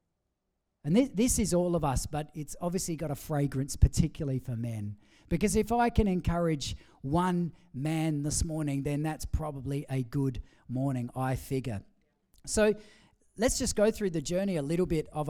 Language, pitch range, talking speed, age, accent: English, 135-180 Hz, 170 wpm, 40-59, Australian